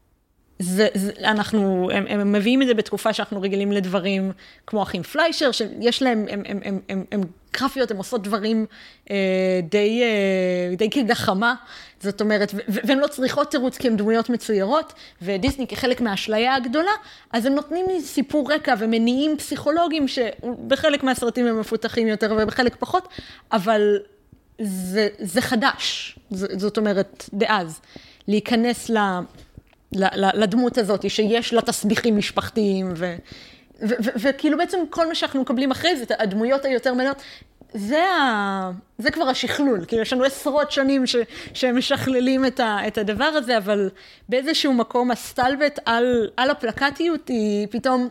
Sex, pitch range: female, 205-270 Hz